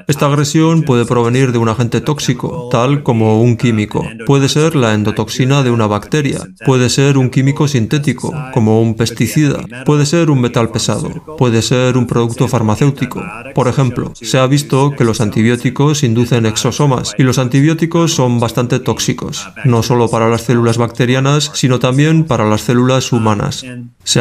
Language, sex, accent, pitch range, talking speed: Spanish, male, Spanish, 115-140 Hz, 165 wpm